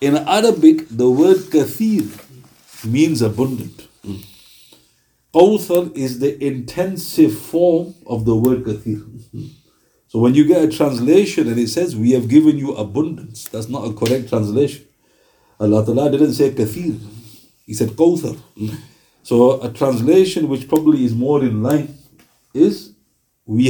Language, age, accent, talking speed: English, 50-69, Indian, 140 wpm